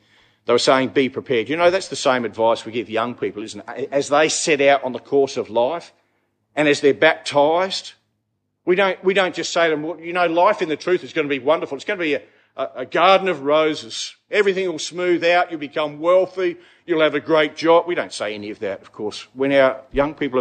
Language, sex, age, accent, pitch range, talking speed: English, male, 50-69, Australian, 115-170 Hz, 245 wpm